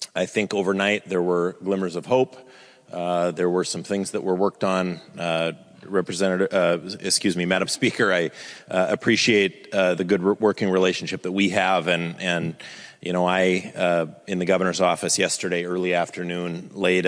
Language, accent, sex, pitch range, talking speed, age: English, American, male, 90-100 Hz, 170 wpm, 30-49